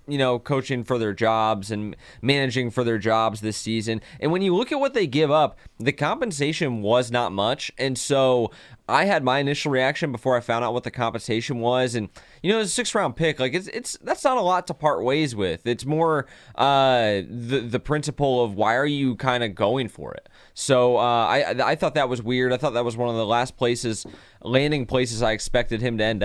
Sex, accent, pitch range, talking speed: male, American, 115-135 Hz, 230 wpm